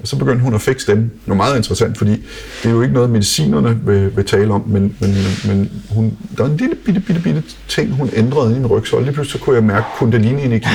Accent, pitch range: native, 100-120 Hz